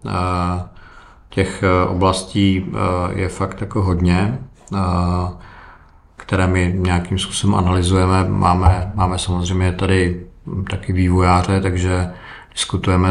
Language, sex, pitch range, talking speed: Czech, male, 90-95 Hz, 85 wpm